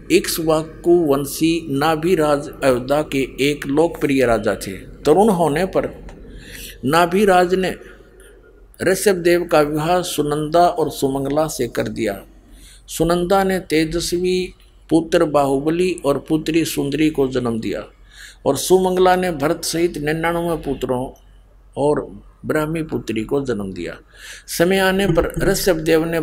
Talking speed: 120 wpm